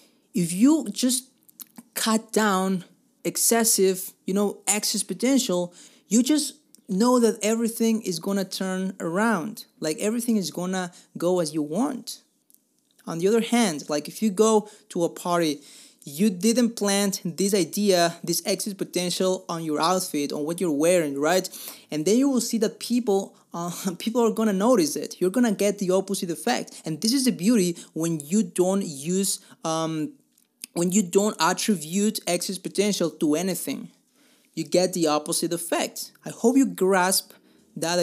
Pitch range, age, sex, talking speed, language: 170-220 Hz, 30-49, male, 165 wpm, English